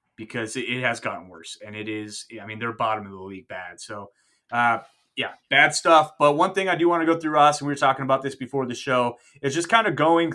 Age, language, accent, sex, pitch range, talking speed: 30-49, English, American, male, 120-145 Hz, 260 wpm